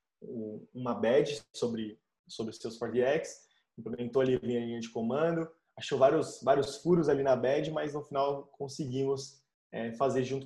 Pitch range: 120-135 Hz